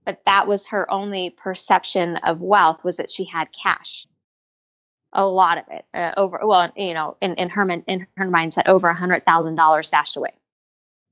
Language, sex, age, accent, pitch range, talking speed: English, female, 20-39, American, 170-205 Hz, 175 wpm